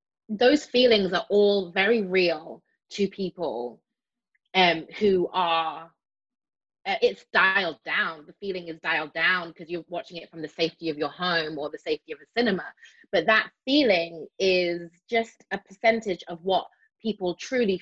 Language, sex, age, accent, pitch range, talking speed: English, female, 20-39, British, 170-225 Hz, 155 wpm